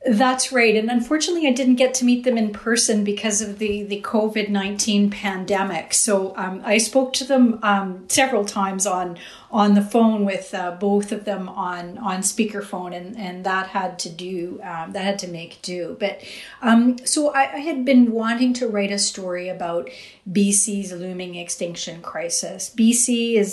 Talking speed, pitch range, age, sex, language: 180 wpm, 185-215 Hz, 40-59, female, English